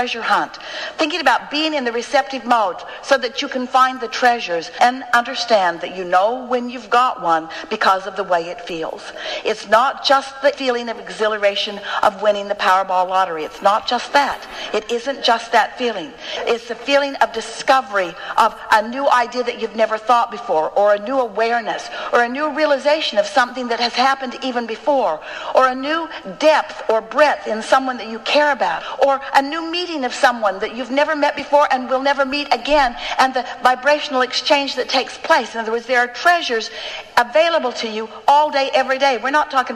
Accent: American